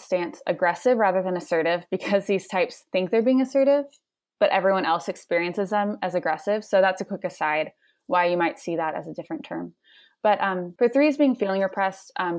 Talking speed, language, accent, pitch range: 200 wpm, English, American, 180-240 Hz